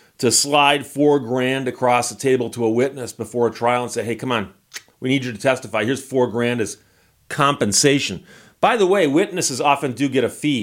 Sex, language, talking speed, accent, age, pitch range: male, English, 210 wpm, American, 40-59, 115-150 Hz